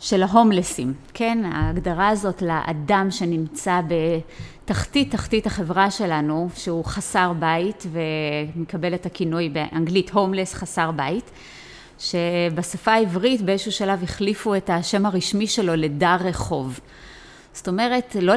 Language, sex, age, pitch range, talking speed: Hebrew, female, 30-49, 165-195 Hz, 115 wpm